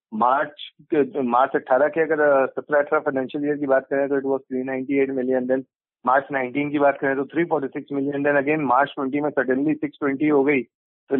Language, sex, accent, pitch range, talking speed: Hindi, male, native, 140-170 Hz, 195 wpm